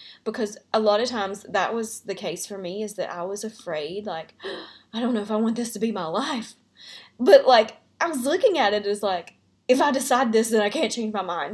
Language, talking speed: English, 245 wpm